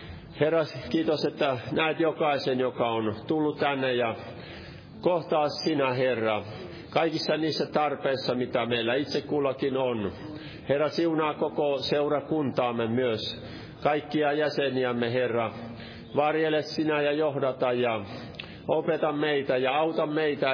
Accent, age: native, 50-69